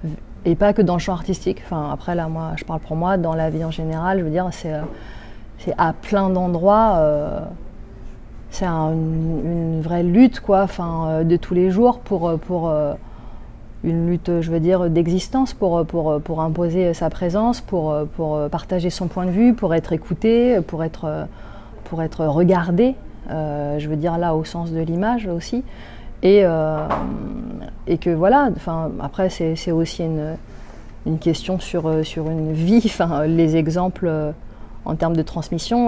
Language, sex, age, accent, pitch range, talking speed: French, female, 30-49, French, 155-185 Hz, 180 wpm